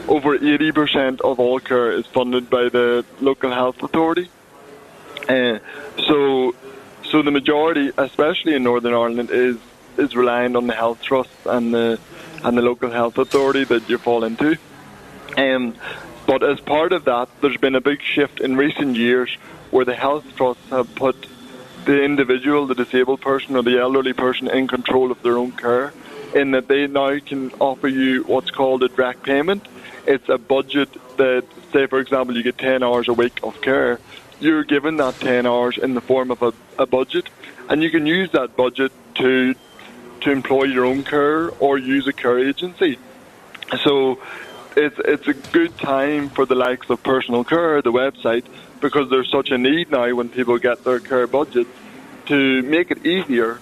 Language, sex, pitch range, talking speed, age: English, male, 125-140 Hz, 180 wpm, 20-39